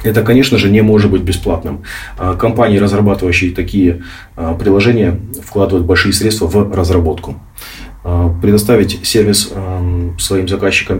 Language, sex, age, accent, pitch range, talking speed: Russian, male, 30-49, native, 90-110 Hz, 110 wpm